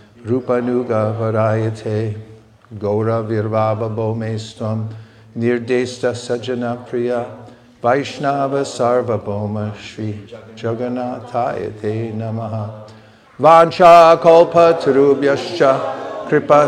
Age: 50-69